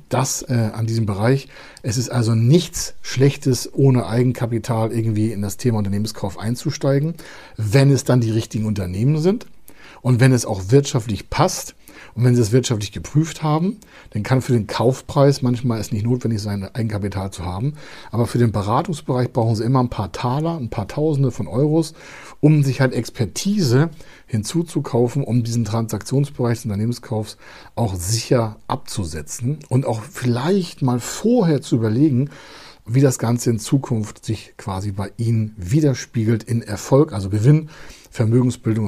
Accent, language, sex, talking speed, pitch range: German, German, male, 155 wpm, 105-135 Hz